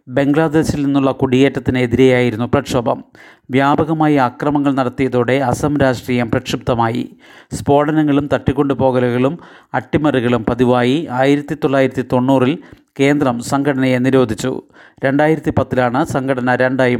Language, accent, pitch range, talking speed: Malayalam, native, 125-145 Hz, 85 wpm